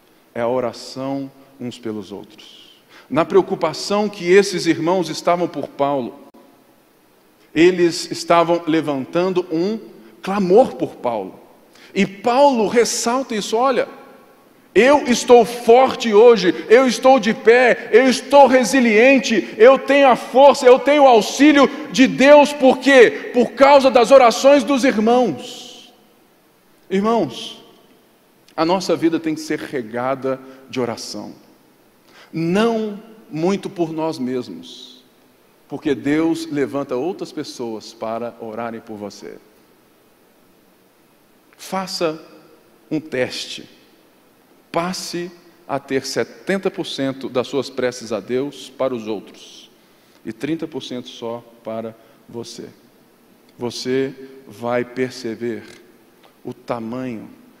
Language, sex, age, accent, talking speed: Portuguese, male, 50-69, Brazilian, 110 wpm